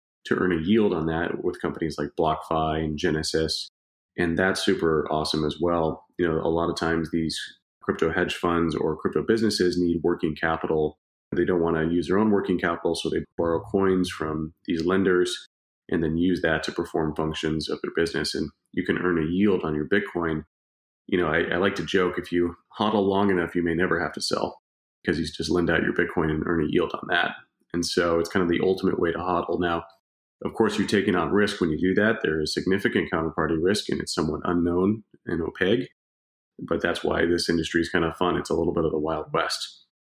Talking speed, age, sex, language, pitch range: 225 wpm, 30-49, male, English, 80-95 Hz